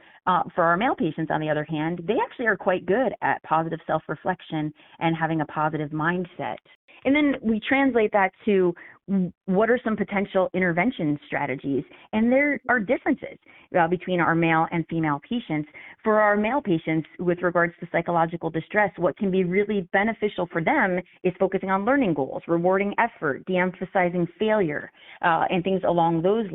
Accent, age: American, 30-49